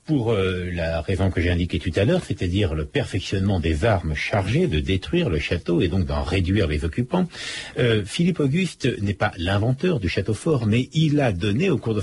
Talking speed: 210 wpm